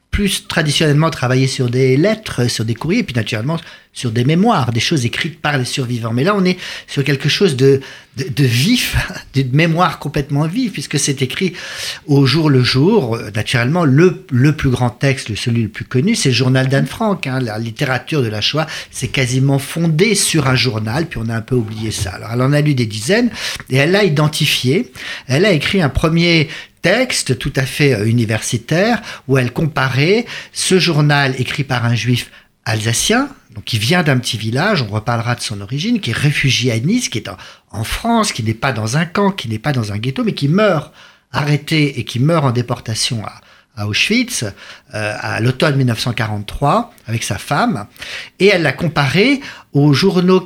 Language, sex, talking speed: French, male, 195 wpm